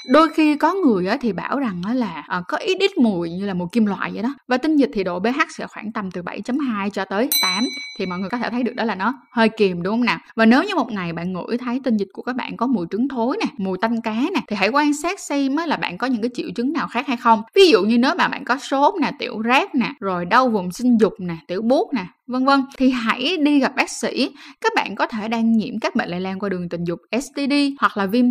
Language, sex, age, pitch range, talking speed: Vietnamese, female, 10-29, 205-275 Hz, 285 wpm